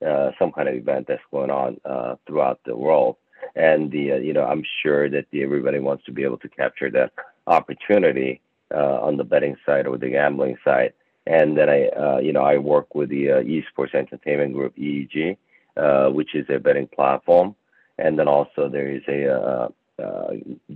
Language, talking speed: English, 195 wpm